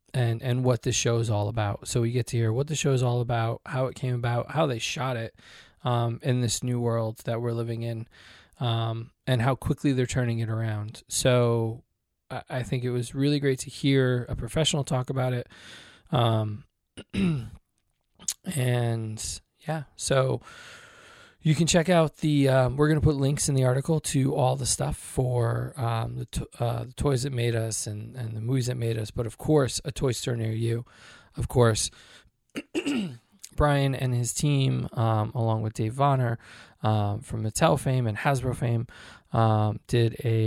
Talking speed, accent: 190 wpm, American